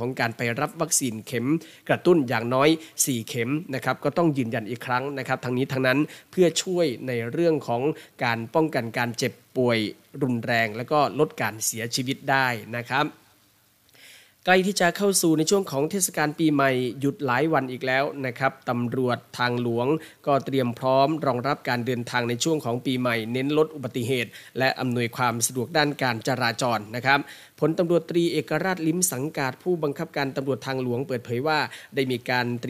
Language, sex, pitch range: Thai, male, 120-150 Hz